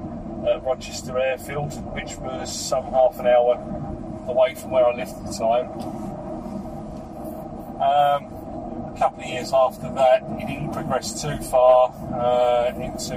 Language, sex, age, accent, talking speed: English, male, 30-49, British, 140 wpm